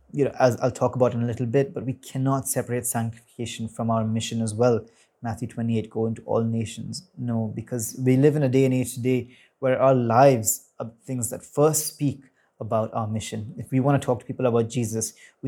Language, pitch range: English, 115-130 Hz